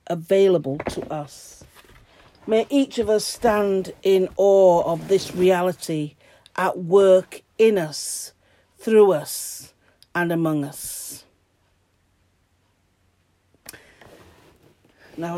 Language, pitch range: English, 155-195 Hz